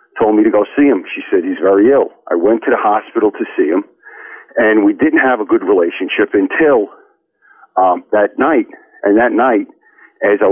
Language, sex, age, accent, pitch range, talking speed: English, male, 50-69, American, 325-420 Hz, 200 wpm